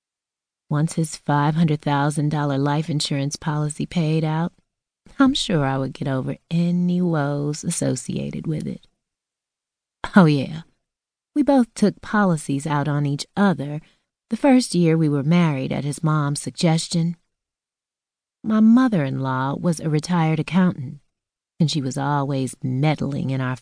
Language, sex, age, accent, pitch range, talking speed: English, female, 30-49, American, 145-180 Hz, 130 wpm